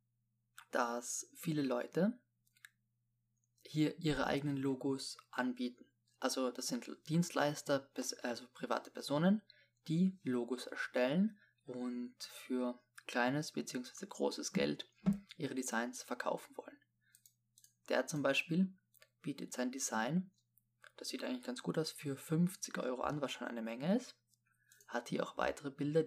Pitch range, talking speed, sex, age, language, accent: 120-160 Hz, 125 wpm, male, 20-39, German, German